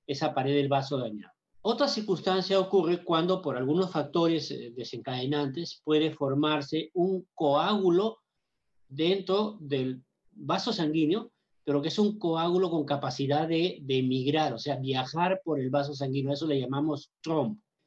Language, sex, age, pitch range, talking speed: Spanish, male, 40-59, 140-180 Hz, 140 wpm